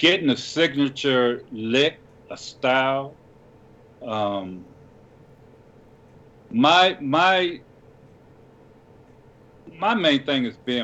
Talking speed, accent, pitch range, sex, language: 80 wpm, American, 120-145 Hz, male, English